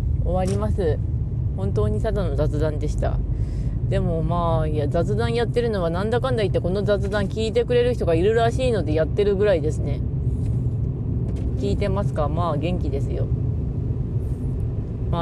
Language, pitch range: Japanese, 95-130 Hz